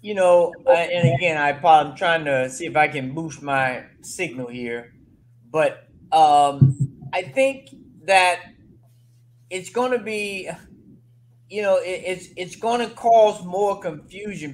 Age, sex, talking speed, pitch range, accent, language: 30-49, male, 130 wpm, 130-175 Hz, American, English